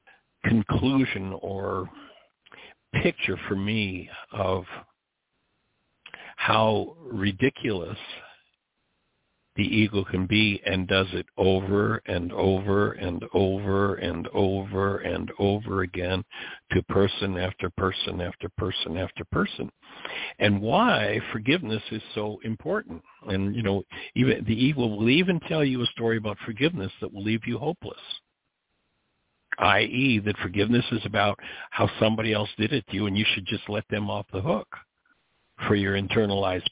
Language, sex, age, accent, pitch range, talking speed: English, male, 60-79, American, 95-110 Hz, 135 wpm